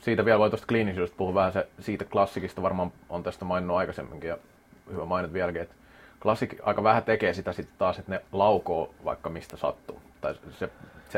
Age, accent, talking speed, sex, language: 30-49, native, 185 wpm, male, Finnish